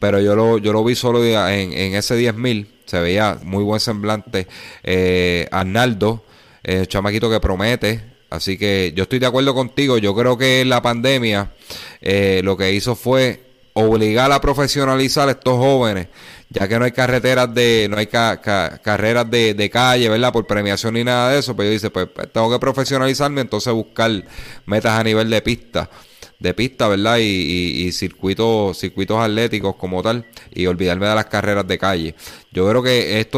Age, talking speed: 30-49, 185 wpm